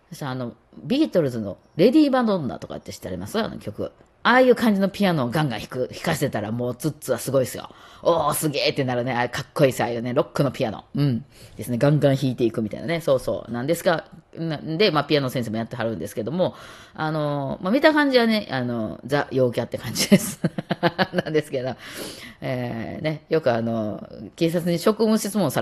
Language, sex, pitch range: Japanese, female, 120-180 Hz